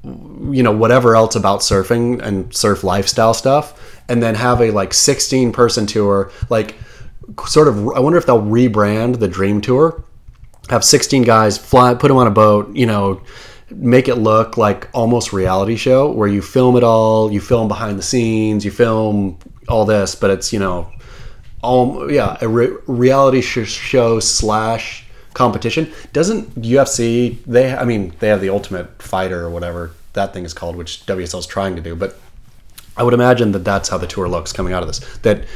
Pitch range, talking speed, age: 100-125 Hz, 185 wpm, 30-49